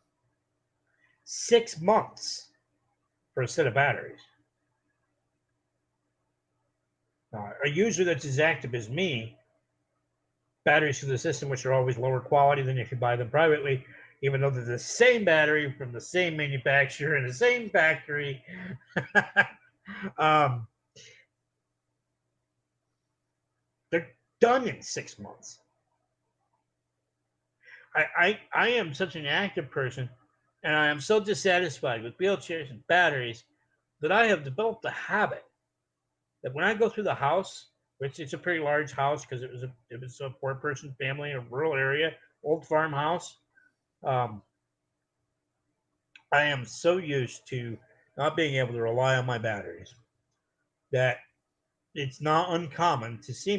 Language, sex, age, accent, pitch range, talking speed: English, male, 50-69, American, 120-160 Hz, 135 wpm